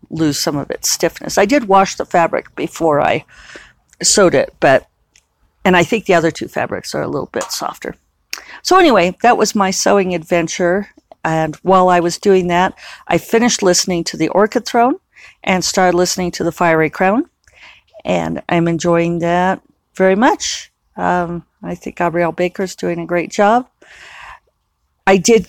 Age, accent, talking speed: 50-69, American, 165 wpm